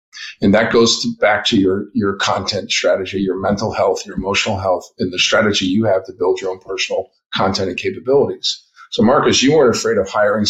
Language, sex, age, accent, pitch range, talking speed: English, male, 50-69, American, 105-150 Hz, 205 wpm